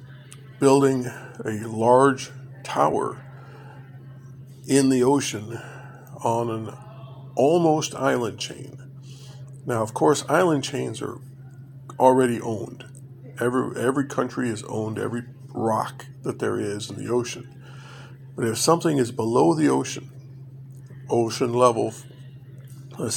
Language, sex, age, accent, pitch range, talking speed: English, male, 50-69, American, 125-135 Hz, 110 wpm